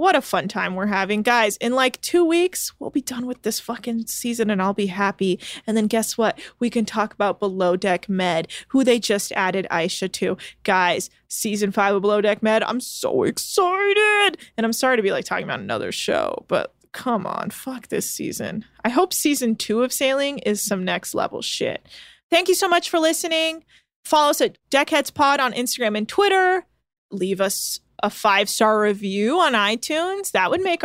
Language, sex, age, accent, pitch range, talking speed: English, female, 20-39, American, 215-310 Hz, 195 wpm